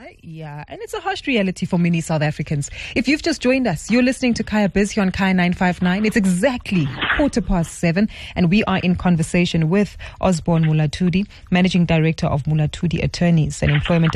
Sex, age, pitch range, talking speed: female, 30-49, 155-200 Hz, 195 wpm